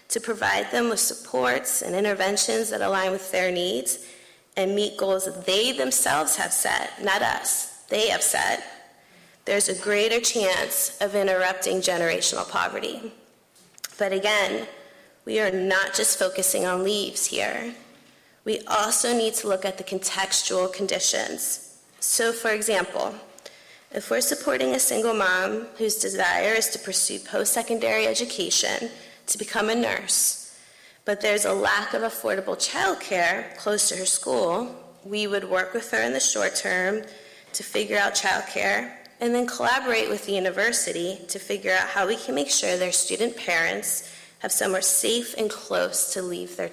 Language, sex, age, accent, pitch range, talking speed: English, female, 20-39, American, 185-220 Hz, 155 wpm